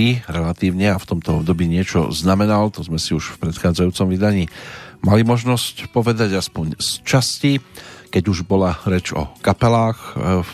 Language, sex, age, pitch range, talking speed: Slovak, male, 40-59, 85-105 Hz, 155 wpm